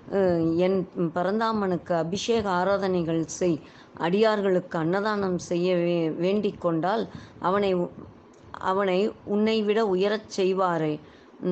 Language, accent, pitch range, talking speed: Tamil, native, 175-210 Hz, 80 wpm